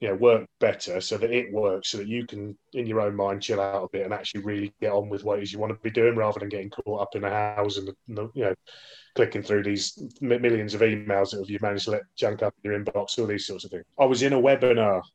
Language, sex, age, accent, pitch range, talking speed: English, male, 20-39, British, 100-120 Hz, 285 wpm